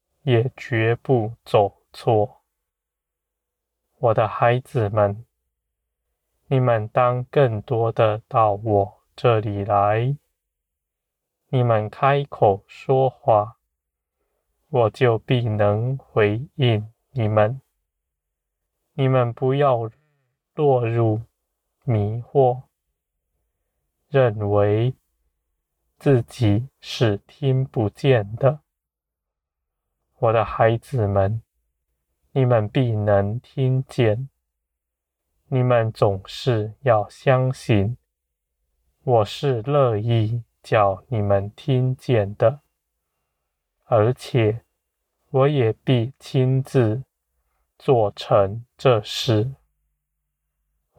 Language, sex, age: Chinese, male, 20-39